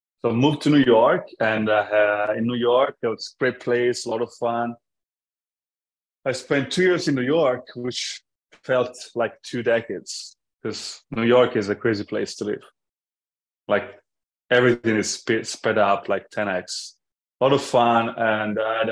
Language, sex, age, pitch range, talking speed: English, male, 20-39, 105-125 Hz, 180 wpm